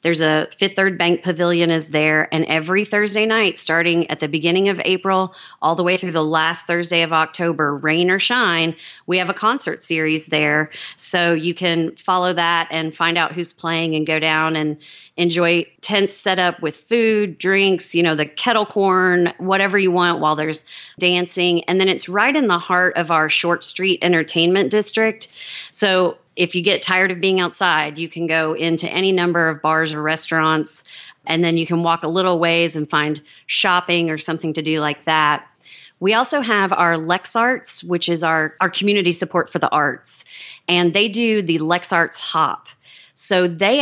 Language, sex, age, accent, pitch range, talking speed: English, female, 30-49, American, 160-185 Hz, 190 wpm